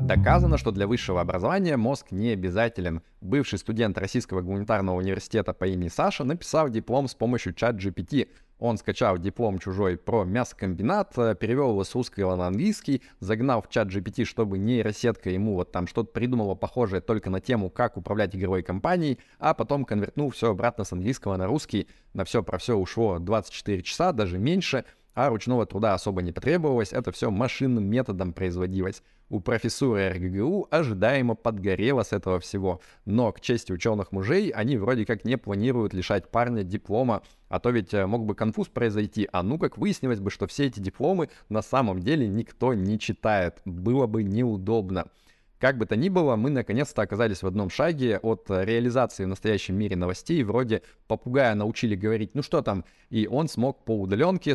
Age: 20-39